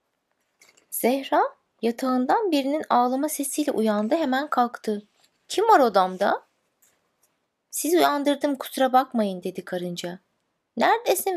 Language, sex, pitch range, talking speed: Turkish, female, 215-300 Hz, 95 wpm